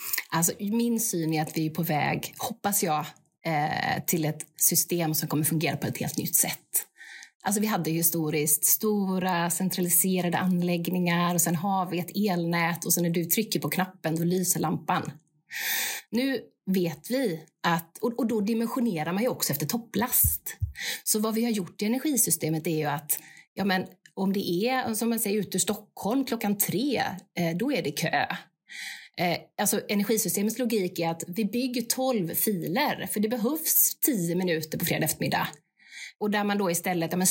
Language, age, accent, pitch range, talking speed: Swedish, 30-49, native, 165-225 Hz, 175 wpm